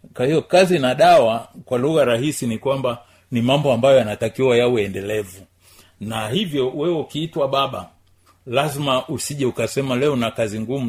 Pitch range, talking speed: 110-150 Hz, 150 wpm